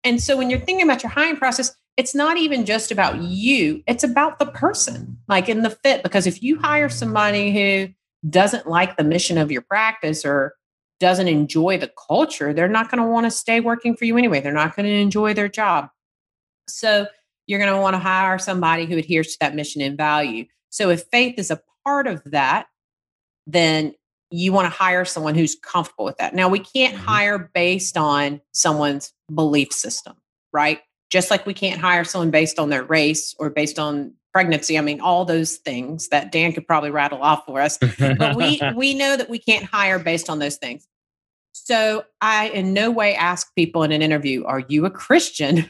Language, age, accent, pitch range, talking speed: English, 40-59, American, 155-220 Hz, 205 wpm